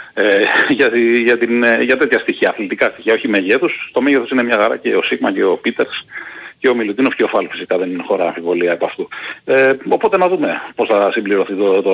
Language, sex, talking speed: Greek, male, 190 wpm